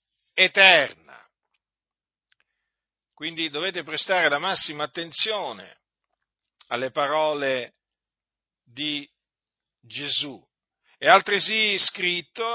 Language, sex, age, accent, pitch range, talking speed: Italian, male, 50-69, native, 155-220 Hz, 65 wpm